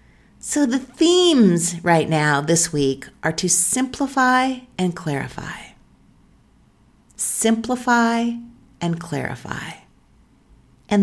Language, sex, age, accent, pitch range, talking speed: English, female, 50-69, American, 165-225 Hz, 85 wpm